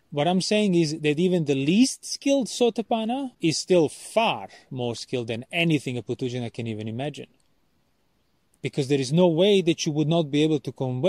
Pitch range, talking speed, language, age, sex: 130-175 Hz, 190 wpm, English, 30-49, male